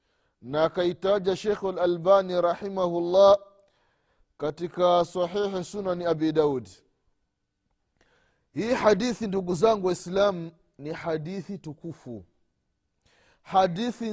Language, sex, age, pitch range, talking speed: Swahili, male, 30-49, 125-210 Hz, 80 wpm